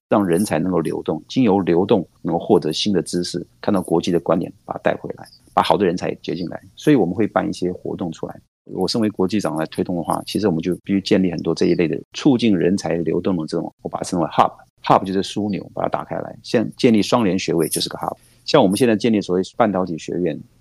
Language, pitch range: Chinese, 85-105 Hz